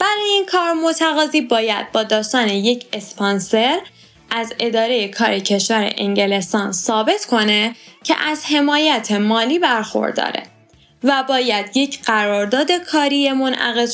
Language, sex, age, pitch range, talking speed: Persian, female, 10-29, 215-295 Hz, 115 wpm